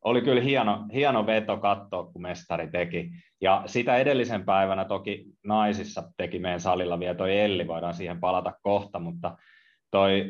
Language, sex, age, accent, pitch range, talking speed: Finnish, male, 30-49, native, 85-110 Hz, 155 wpm